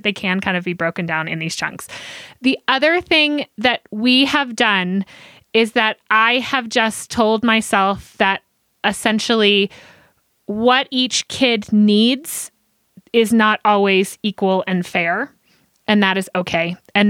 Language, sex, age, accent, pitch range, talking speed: English, female, 20-39, American, 200-250 Hz, 145 wpm